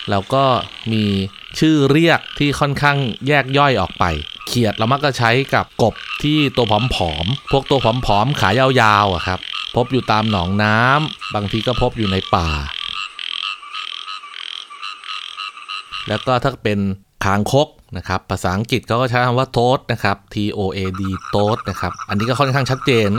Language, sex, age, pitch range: Thai, male, 20-39, 100-130 Hz